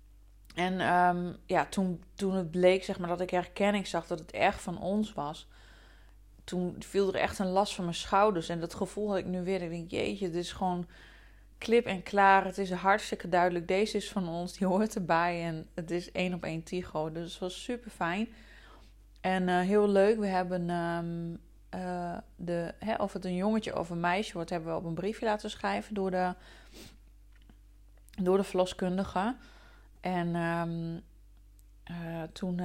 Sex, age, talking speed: female, 20-39, 185 wpm